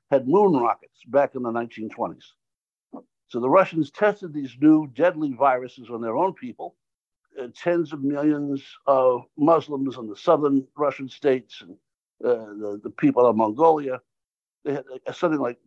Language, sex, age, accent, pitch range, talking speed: English, male, 60-79, American, 125-165 Hz, 155 wpm